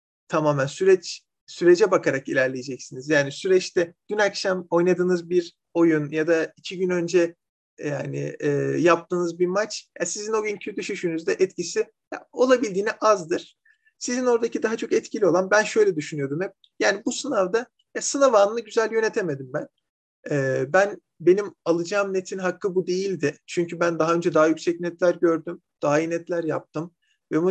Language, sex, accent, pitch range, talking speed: Turkish, male, native, 155-210 Hz, 155 wpm